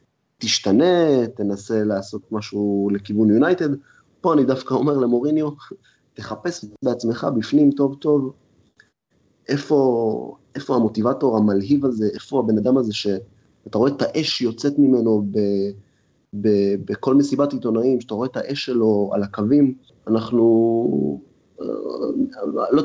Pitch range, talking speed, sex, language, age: 105-130 Hz, 120 wpm, male, Hebrew, 30-49